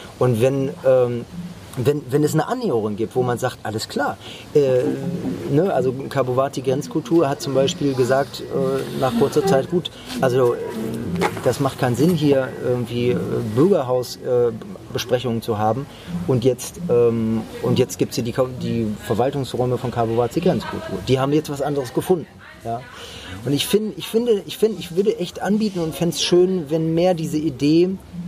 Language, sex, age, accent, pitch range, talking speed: German, male, 30-49, German, 120-165 Hz, 170 wpm